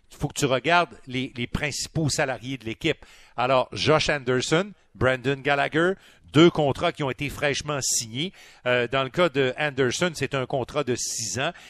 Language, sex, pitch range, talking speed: French, male, 125-155 Hz, 180 wpm